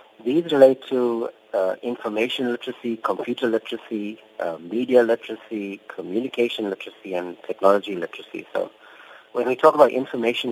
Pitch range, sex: 95-125 Hz, male